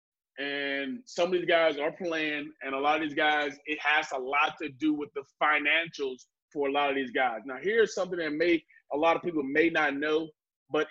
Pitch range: 145-185 Hz